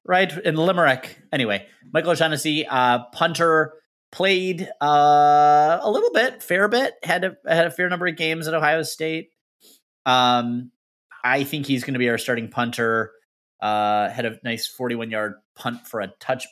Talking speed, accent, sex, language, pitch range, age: 165 wpm, American, male, English, 105-150 Hz, 30-49